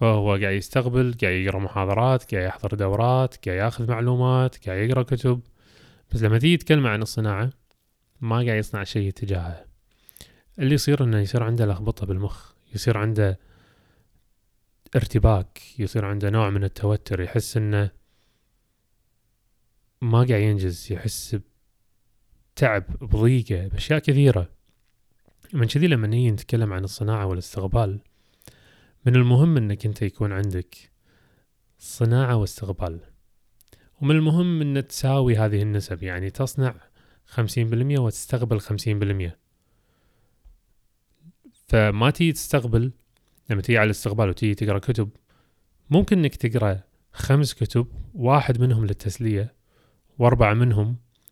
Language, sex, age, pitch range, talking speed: Arabic, male, 20-39, 100-125 Hz, 110 wpm